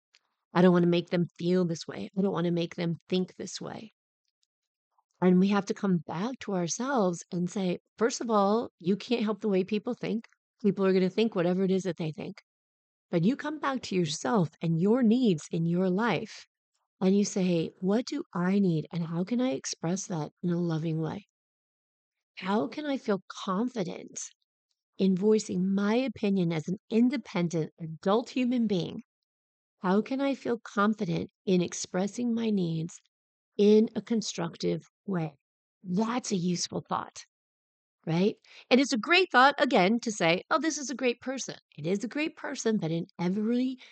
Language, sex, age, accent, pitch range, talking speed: English, female, 40-59, American, 175-230 Hz, 180 wpm